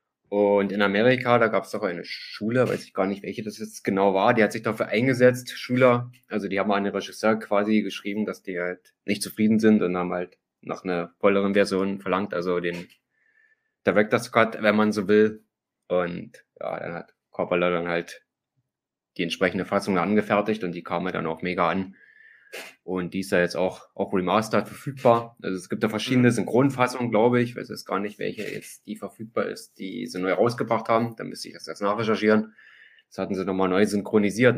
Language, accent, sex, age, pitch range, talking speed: German, German, male, 20-39, 95-115 Hz, 200 wpm